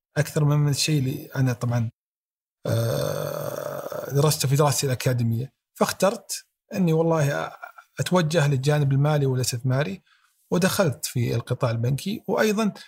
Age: 40-59